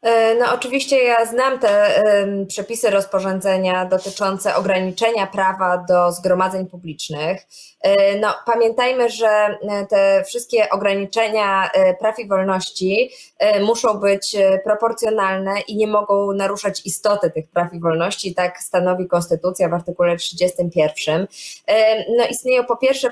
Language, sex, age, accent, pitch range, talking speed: Polish, female, 20-39, native, 185-215 Hz, 115 wpm